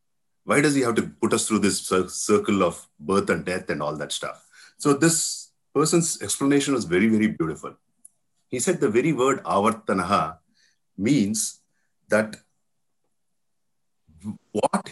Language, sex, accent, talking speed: English, male, Indian, 140 wpm